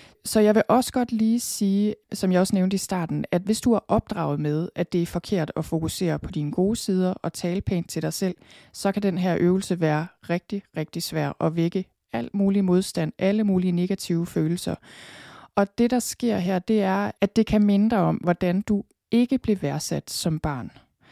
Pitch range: 175-210 Hz